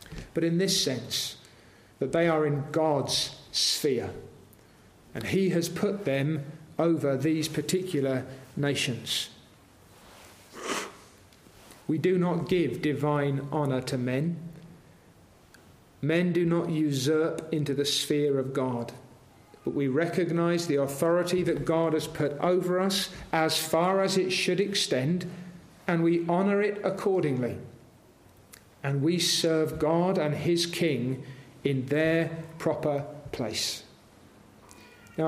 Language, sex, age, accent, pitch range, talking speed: English, male, 40-59, British, 140-185 Hz, 120 wpm